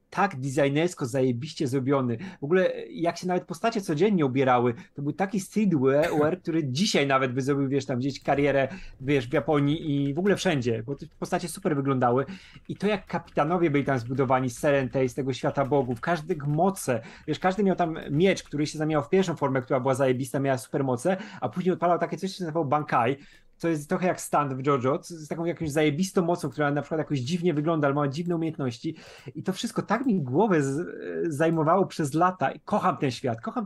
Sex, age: male, 30-49